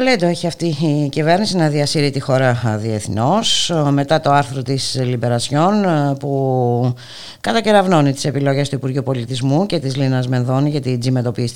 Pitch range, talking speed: 115-150 Hz, 155 wpm